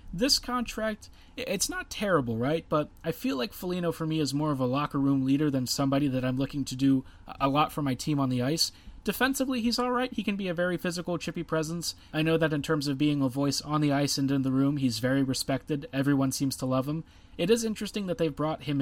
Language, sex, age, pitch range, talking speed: English, male, 30-49, 135-175 Hz, 245 wpm